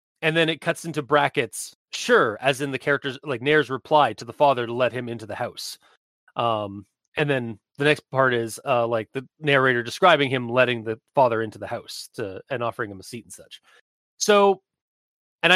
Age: 30-49